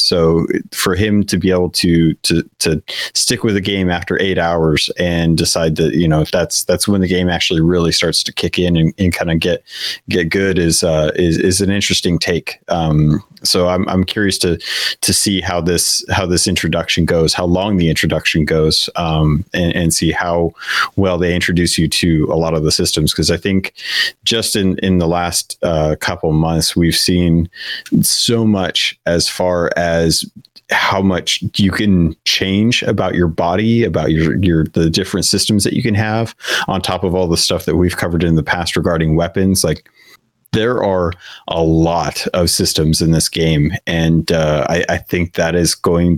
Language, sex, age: English, male, 30-49